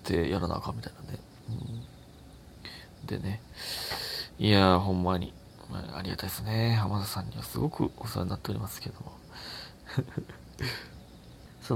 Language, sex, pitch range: Japanese, male, 95-125 Hz